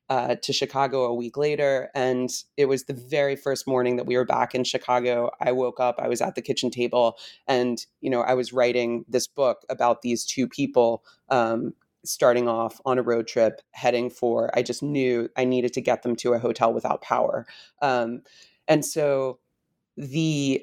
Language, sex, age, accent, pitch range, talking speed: English, female, 30-49, American, 120-140 Hz, 190 wpm